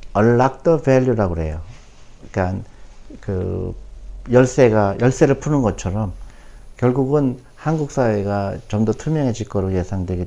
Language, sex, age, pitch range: Korean, male, 50-69, 95-125 Hz